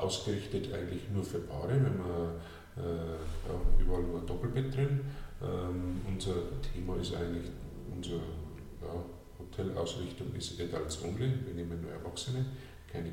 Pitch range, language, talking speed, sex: 85-105 Hz, German, 140 wpm, male